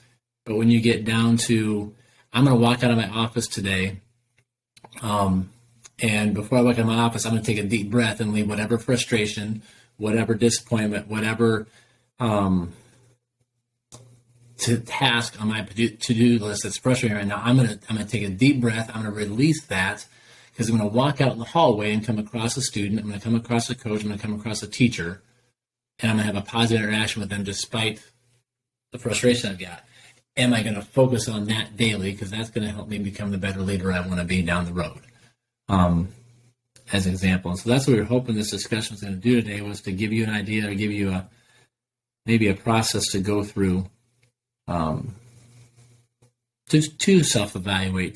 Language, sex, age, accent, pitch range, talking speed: English, male, 30-49, American, 105-120 Hz, 210 wpm